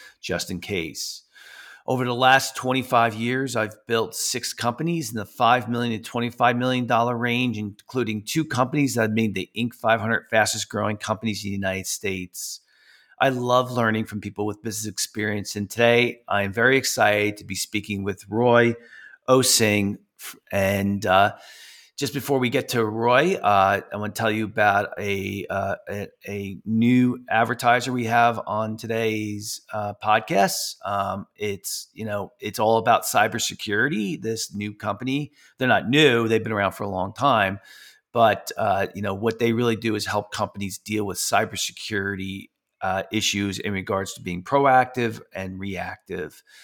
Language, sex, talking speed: English, male, 165 wpm